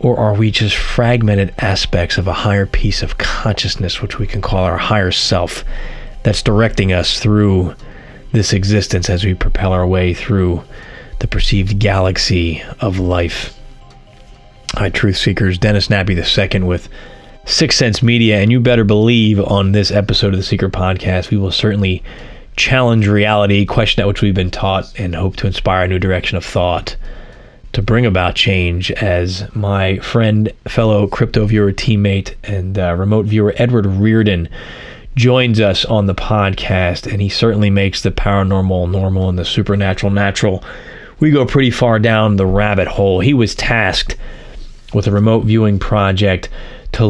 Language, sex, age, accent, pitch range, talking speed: English, male, 30-49, American, 95-110 Hz, 165 wpm